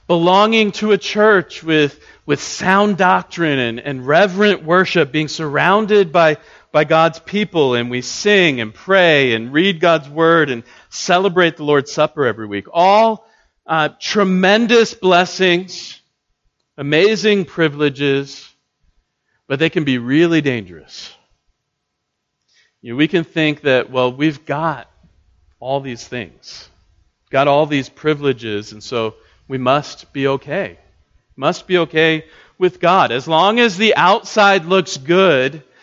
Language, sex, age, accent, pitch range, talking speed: English, male, 40-59, American, 120-175 Hz, 130 wpm